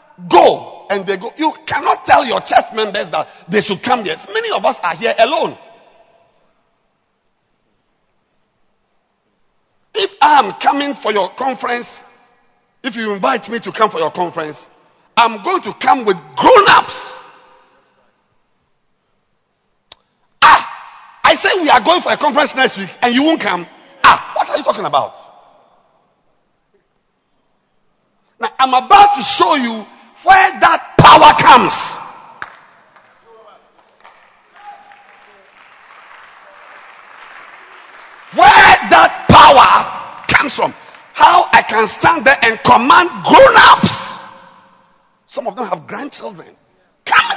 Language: English